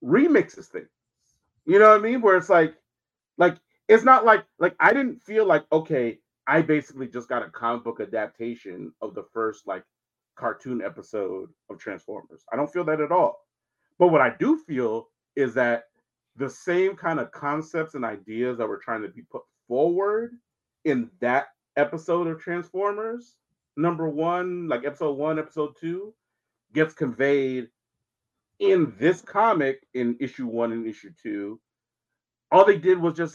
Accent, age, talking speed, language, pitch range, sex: American, 30-49, 165 wpm, English, 125-195 Hz, male